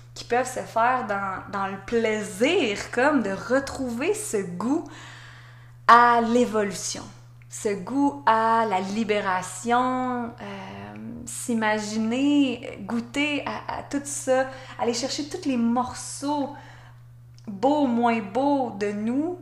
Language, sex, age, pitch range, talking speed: French, female, 20-39, 195-260 Hz, 115 wpm